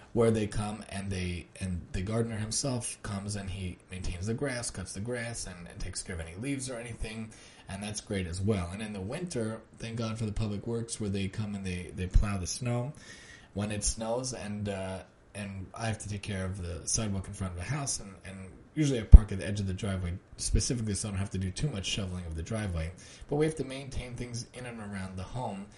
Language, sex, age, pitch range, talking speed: English, male, 20-39, 100-115 Hz, 245 wpm